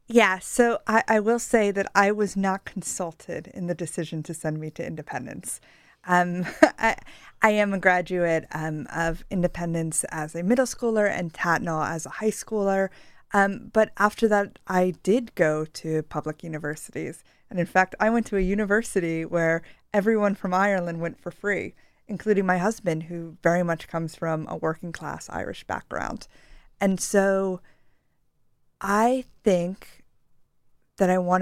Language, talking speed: English, 160 wpm